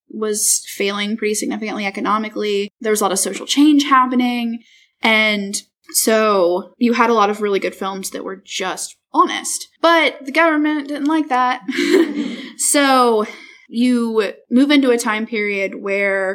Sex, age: female, 10-29